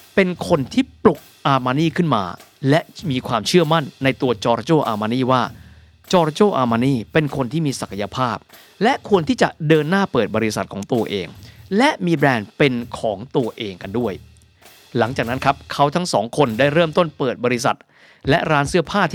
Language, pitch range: Thai, 125-175 Hz